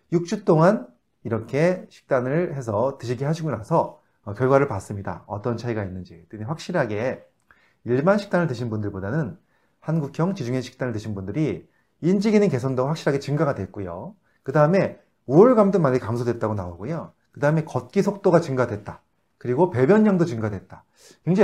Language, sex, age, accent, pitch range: Korean, male, 30-49, native, 105-170 Hz